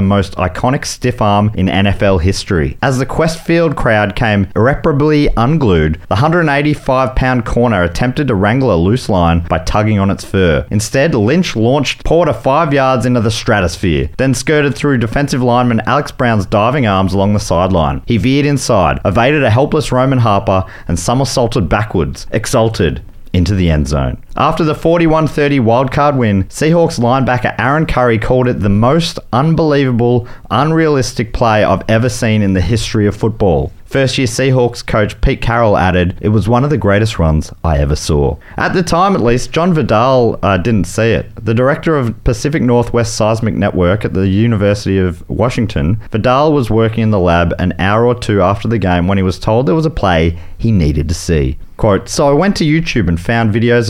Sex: male